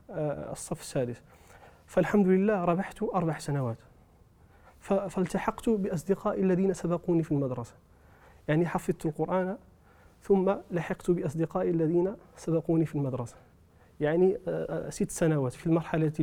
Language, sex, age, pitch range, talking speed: Arabic, male, 30-49, 130-165 Hz, 105 wpm